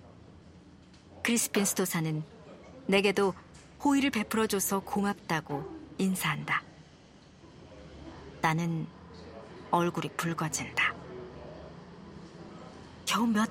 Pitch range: 155-210 Hz